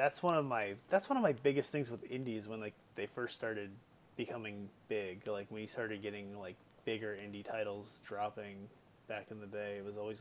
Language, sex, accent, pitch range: English, male, American, 105-140 Hz